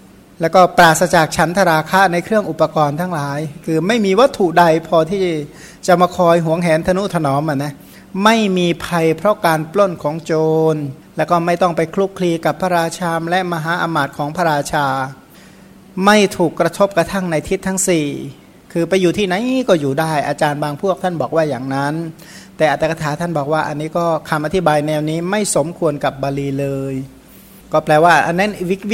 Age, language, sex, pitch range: 60-79, Thai, male, 155-185 Hz